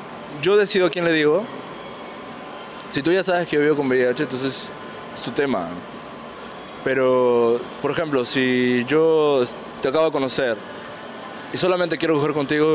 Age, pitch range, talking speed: 20-39, 130-165 Hz, 155 wpm